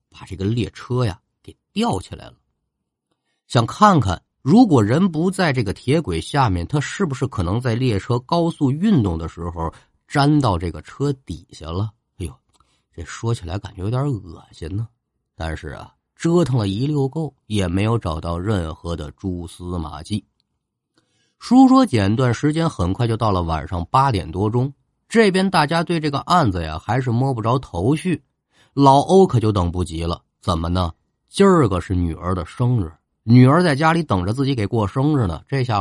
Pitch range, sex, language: 90-140 Hz, male, Chinese